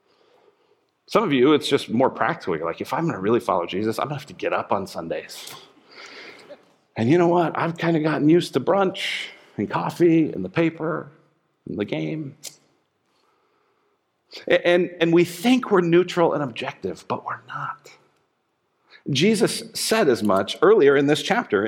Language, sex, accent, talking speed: English, male, American, 175 wpm